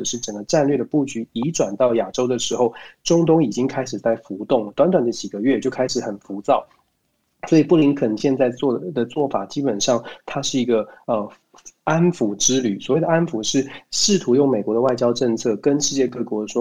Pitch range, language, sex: 115-145 Hz, Chinese, male